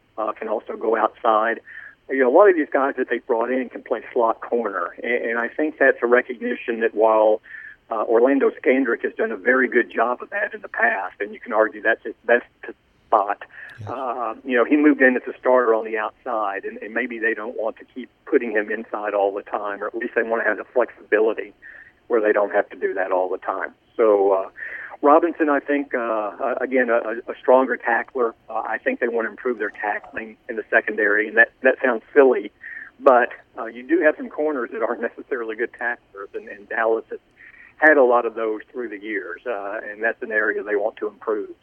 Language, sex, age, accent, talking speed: English, male, 50-69, American, 225 wpm